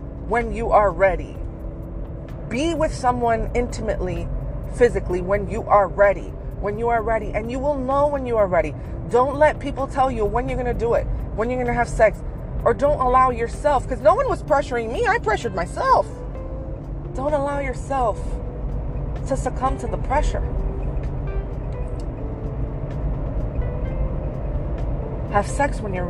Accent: American